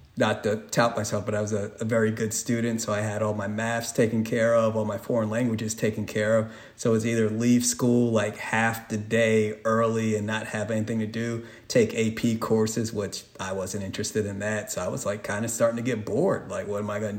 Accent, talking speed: American, 240 wpm